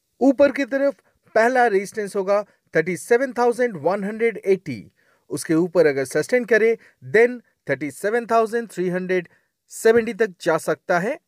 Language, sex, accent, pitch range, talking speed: Hindi, male, native, 160-230 Hz, 65 wpm